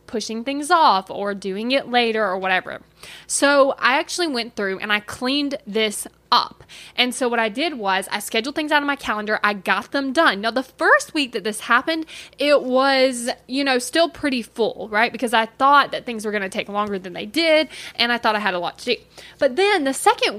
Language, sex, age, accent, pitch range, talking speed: English, female, 20-39, American, 215-285 Hz, 225 wpm